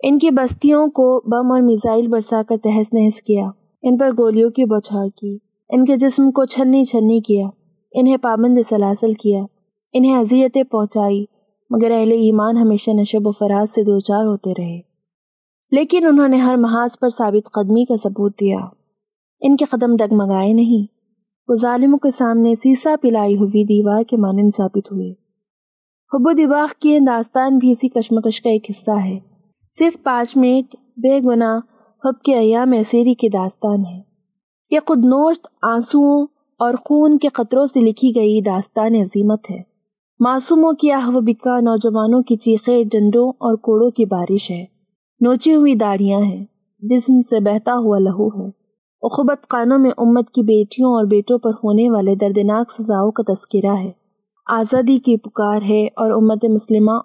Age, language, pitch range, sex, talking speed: 20-39, Urdu, 205-255 Hz, female, 160 wpm